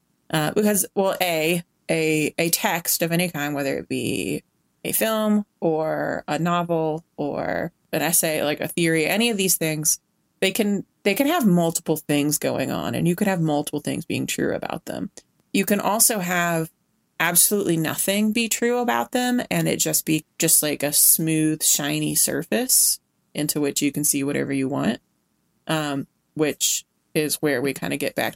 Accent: American